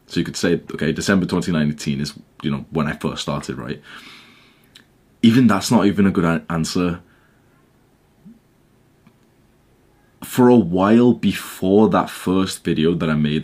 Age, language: 20-39, English